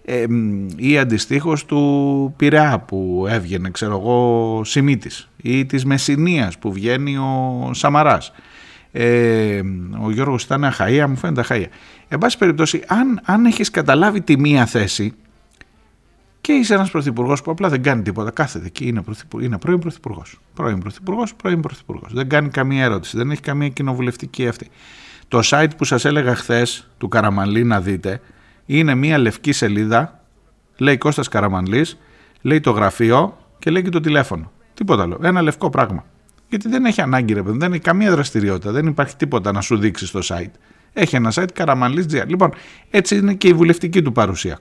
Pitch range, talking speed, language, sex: 110-155 Hz, 165 wpm, Greek, male